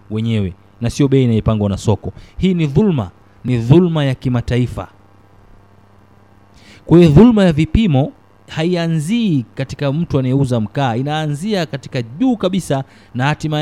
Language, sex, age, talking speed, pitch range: Swahili, male, 30-49, 130 wpm, 110-150 Hz